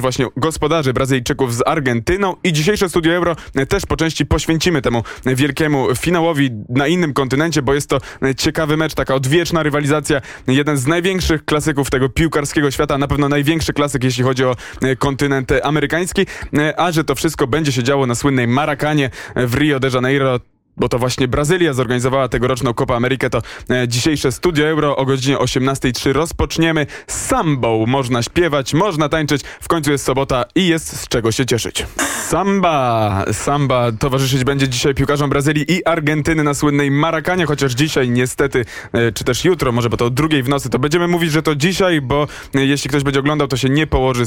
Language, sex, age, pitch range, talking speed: Polish, male, 20-39, 130-155 Hz, 180 wpm